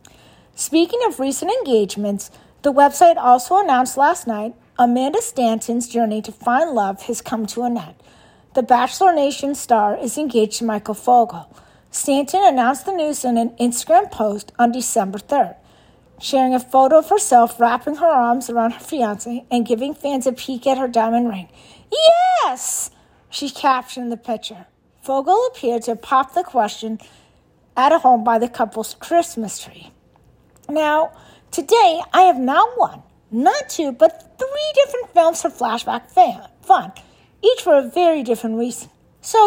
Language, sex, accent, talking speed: English, female, American, 155 wpm